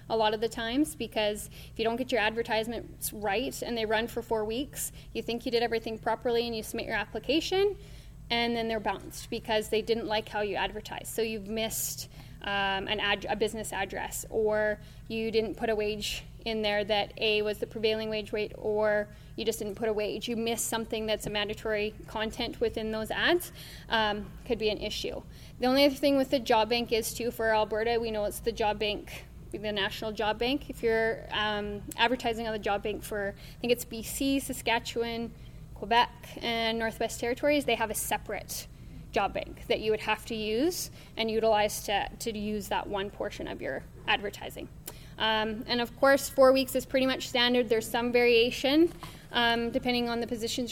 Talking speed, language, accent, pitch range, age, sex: 200 wpm, English, American, 210-235 Hz, 10-29, female